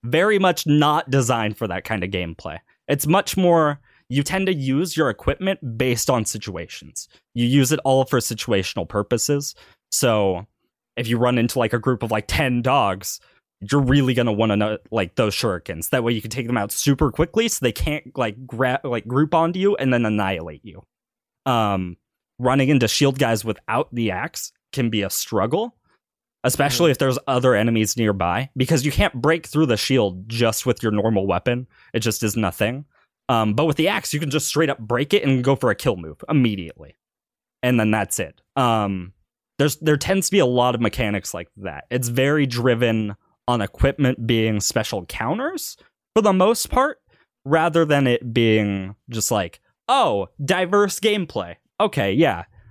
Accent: American